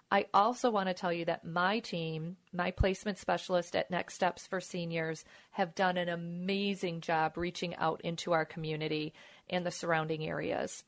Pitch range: 170-200 Hz